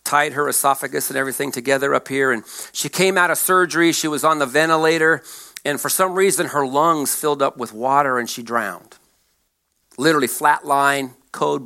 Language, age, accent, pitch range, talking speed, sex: English, 50-69, American, 125-160 Hz, 185 wpm, male